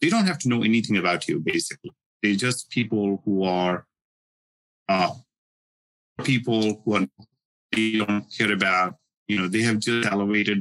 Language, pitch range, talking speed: English, 100-120 Hz, 160 wpm